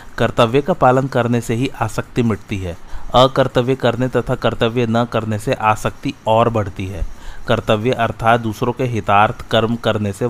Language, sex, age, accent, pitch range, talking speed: Hindi, male, 30-49, native, 105-120 Hz, 165 wpm